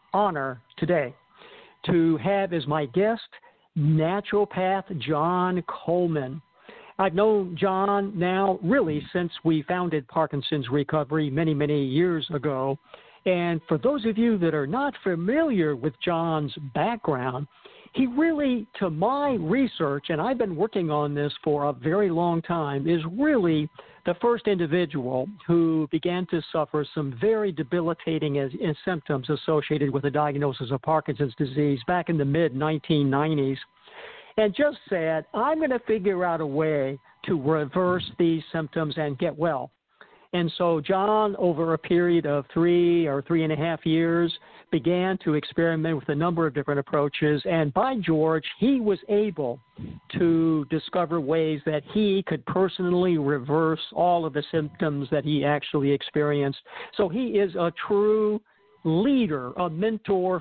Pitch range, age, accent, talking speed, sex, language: 150-190 Hz, 60-79, American, 145 wpm, male, English